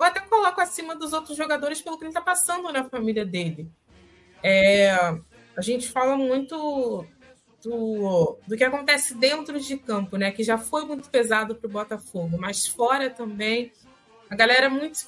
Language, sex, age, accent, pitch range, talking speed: Portuguese, female, 20-39, Brazilian, 225-290 Hz, 170 wpm